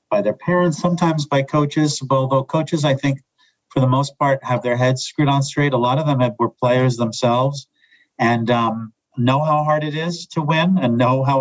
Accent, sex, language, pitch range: American, male, English, 125-145 Hz